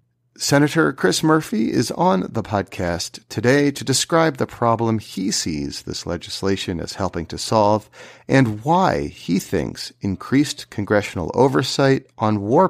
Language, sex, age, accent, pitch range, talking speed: English, male, 40-59, American, 95-130 Hz, 135 wpm